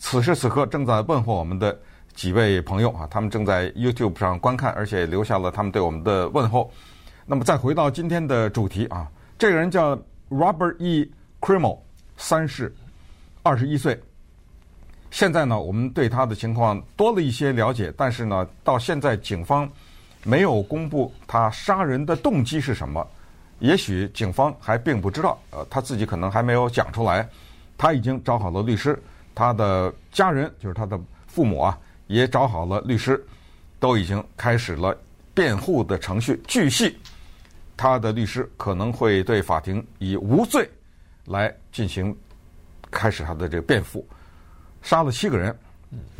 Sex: male